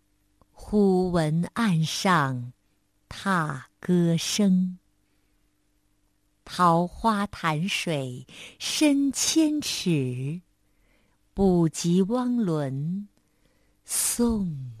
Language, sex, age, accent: Chinese, female, 50-69, American